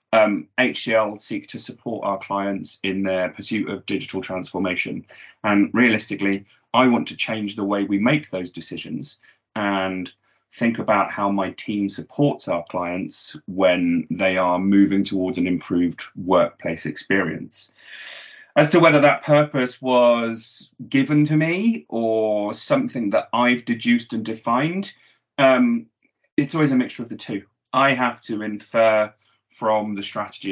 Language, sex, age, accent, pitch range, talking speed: English, male, 30-49, British, 100-125 Hz, 145 wpm